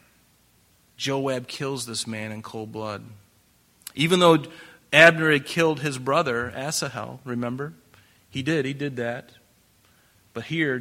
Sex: male